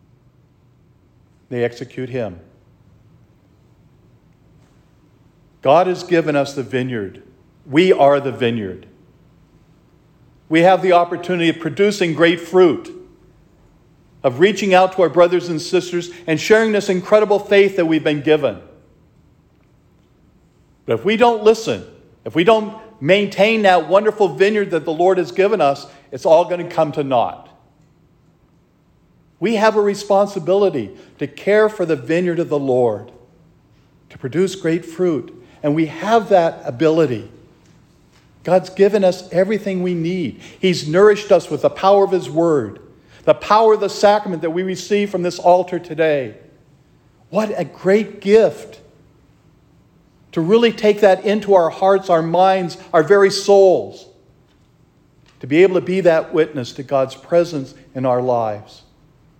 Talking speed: 140 wpm